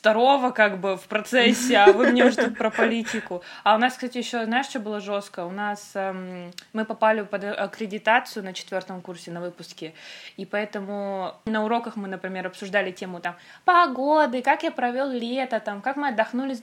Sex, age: female, 20-39